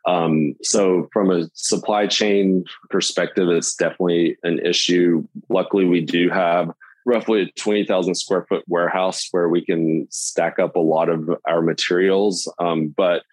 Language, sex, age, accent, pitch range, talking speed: English, male, 20-39, American, 85-95 Hz, 150 wpm